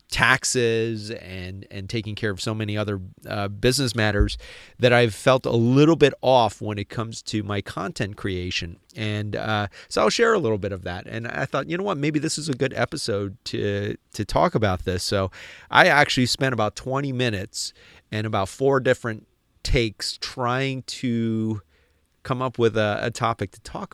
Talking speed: 190 wpm